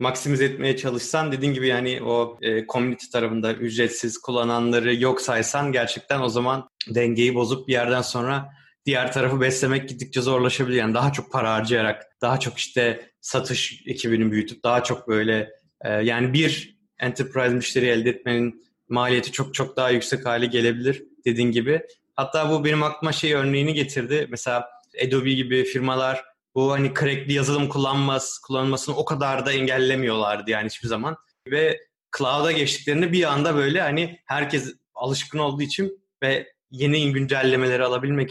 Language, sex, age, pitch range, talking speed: Turkish, male, 20-39, 120-140 Hz, 150 wpm